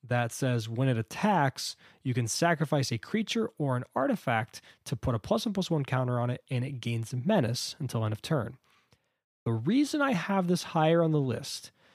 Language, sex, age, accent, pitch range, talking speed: English, male, 20-39, American, 125-165 Hz, 200 wpm